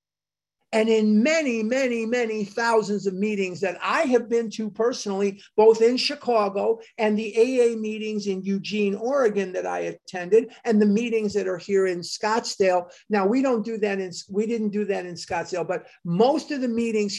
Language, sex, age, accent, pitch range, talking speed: English, male, 50-69, American, 195-240 Hz, 180 wpm